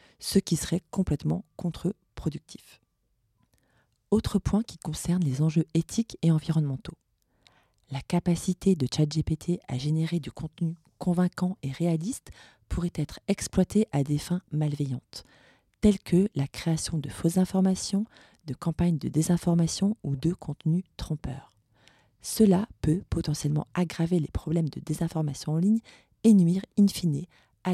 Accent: French